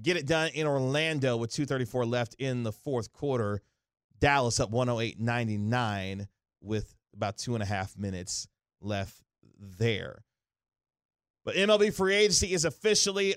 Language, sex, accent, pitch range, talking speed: English, male, American, 105-130 Hz, 135 wpm